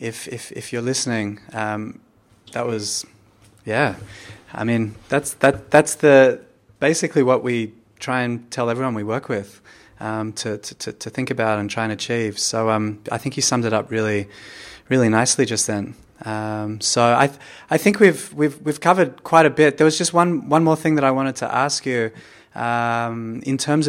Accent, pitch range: Australian, 110-135 Hz